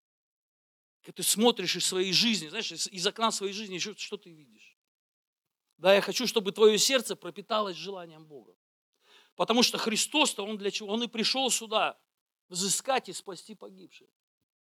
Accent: native